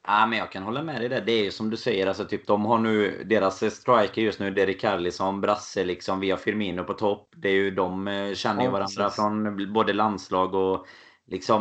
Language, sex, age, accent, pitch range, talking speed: Swedish, male, 30-49, native, 95-105 Hz, 240 wpm